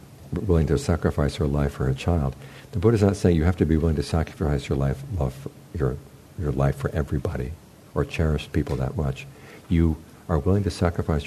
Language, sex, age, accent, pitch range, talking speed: English, male, 60-79, American, 70-85 Hz, 210 wpm